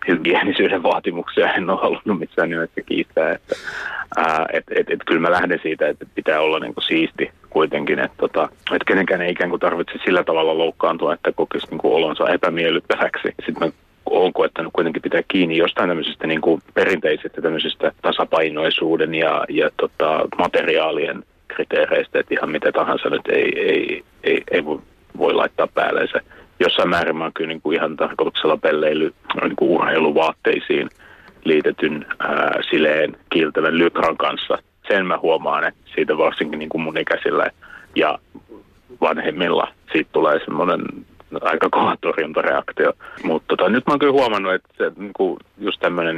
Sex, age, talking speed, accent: male, 30-49, 145 wpm, native